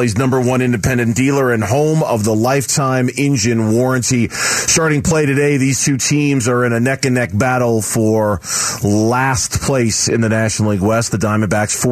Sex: male